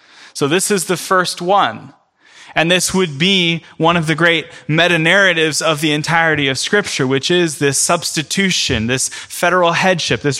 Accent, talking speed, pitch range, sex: American, 160 wpm, 115-165 Hz, male